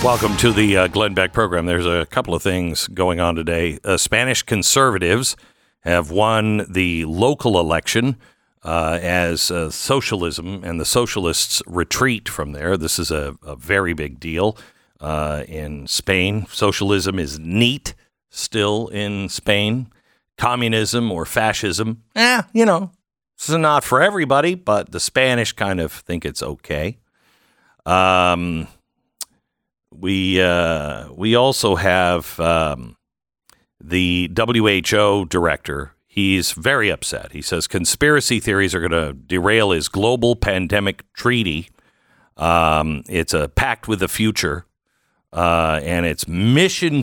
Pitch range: 85-110 Hz